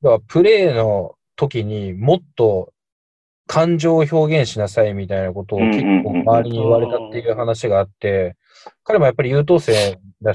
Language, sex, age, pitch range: Japanese, male, 20-39, 100-140 Hz